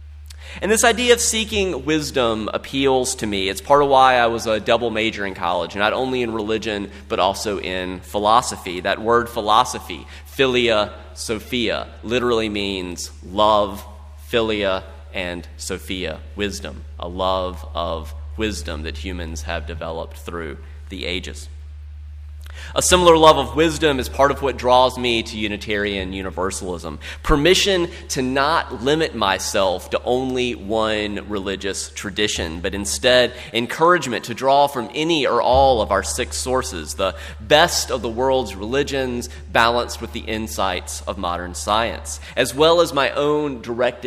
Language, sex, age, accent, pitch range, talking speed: English, male, 30-49, American, 80-130 Hz, 145 wpm